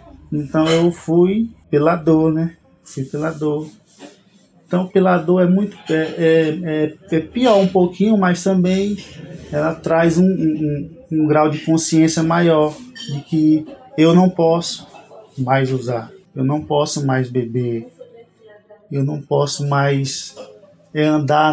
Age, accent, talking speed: 20-39, Brazilian, 135 wpm